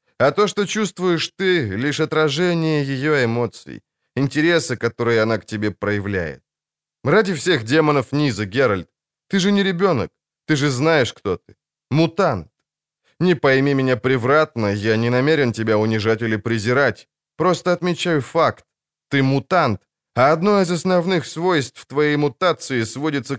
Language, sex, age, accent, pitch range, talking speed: Ukrainian, male, 20-39, native, 120-155 Hz, 140 wpm